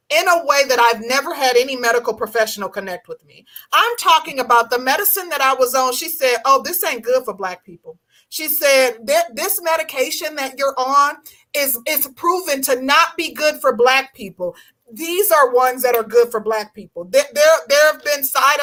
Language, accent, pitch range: English, American, 255-335 Hz